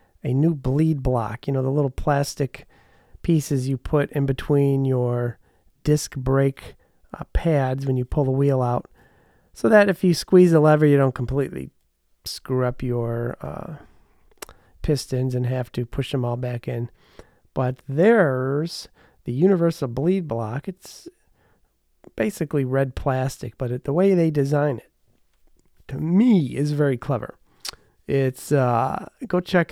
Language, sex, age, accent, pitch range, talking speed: English, male, 40-59, American, 125-160 Hz, 145 wpm